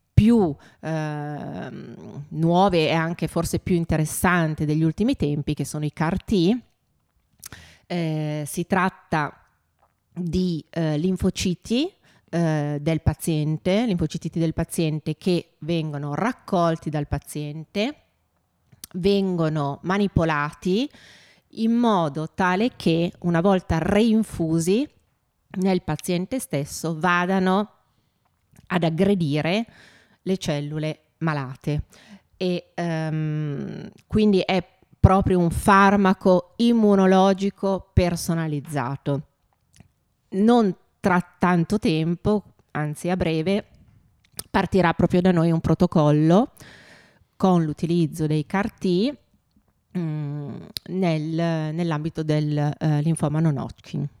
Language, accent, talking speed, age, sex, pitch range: Italian, native, 95 wpm, 30-49, female, 155-190 Hz